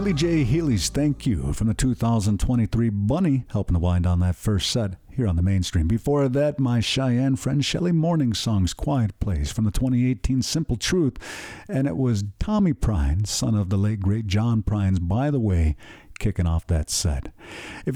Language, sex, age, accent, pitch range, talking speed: English, male, 50-69, American, 100-135 Hz, 180 wpm